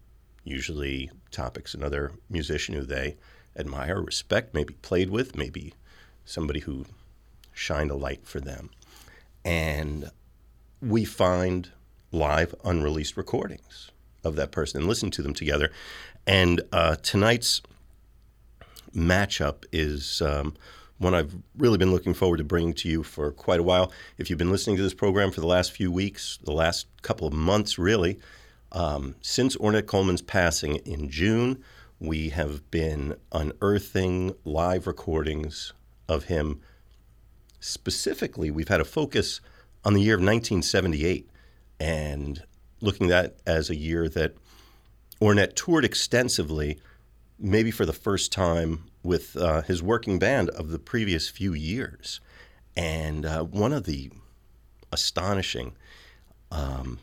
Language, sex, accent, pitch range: English, male, American, 75-100 Hz